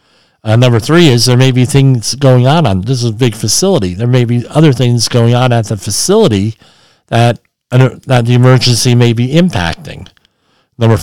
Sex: male